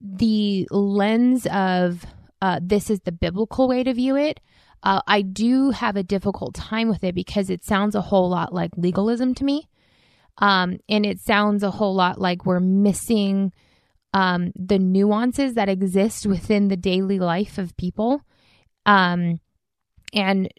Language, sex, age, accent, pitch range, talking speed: English, female, 20-39, American, 185-215 Hz, 155 wpm